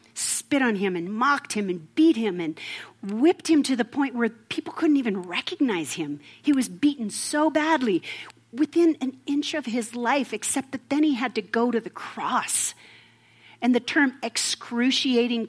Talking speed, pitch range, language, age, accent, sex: 180 wpm, 185-265 Hz, English, 40-59, American, female